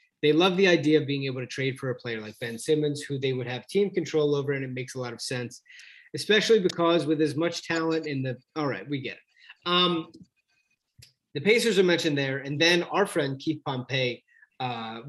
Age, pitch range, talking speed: 30-49, 130-165 Hz, 220 wpm